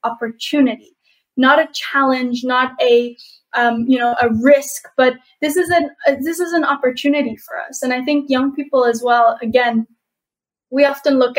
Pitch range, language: 235-285 Hz, English